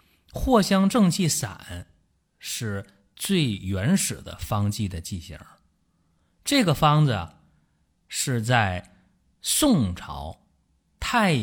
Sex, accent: male, native